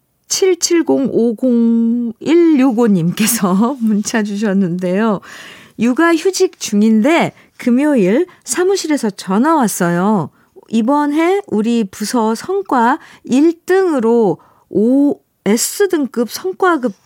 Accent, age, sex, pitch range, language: native, 50-69, female, 205-270 Hz, Korean